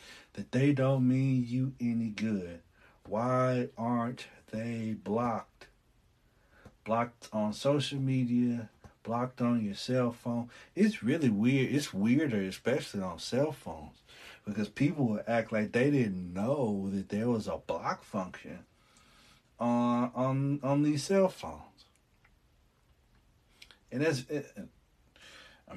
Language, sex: English, male